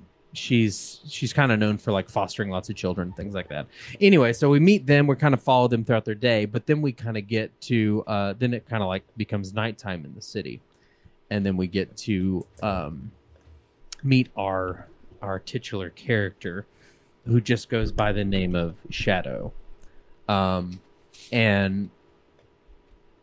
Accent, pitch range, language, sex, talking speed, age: American, 100-120 Hz, English, male, 170 wpm, 30-49